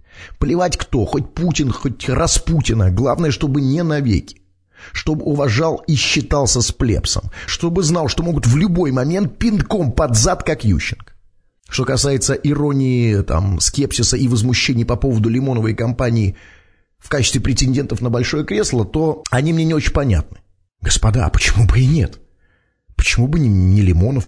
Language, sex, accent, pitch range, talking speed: Russian, male, native, 95-145 Hz, 150 wpm